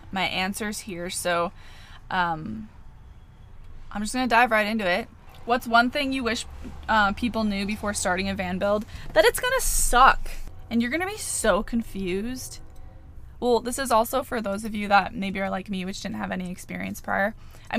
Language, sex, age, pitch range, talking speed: English, female, 20-39, 185-235 Hz, 195 wpm